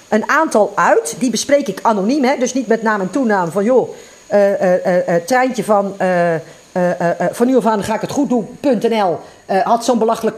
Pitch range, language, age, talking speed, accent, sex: 190-255 Hz, Dutch, 40-59, 220 wpm, Dutch, female